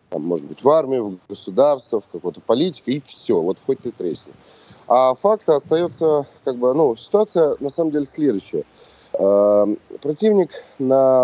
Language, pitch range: Russian, 115-150 Hz